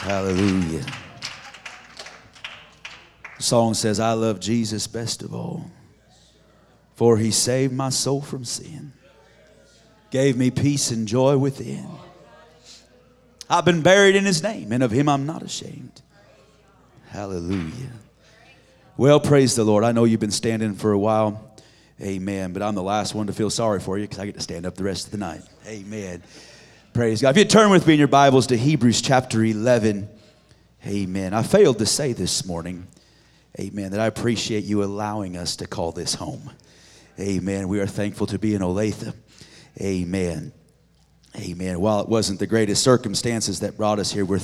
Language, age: English, 30-49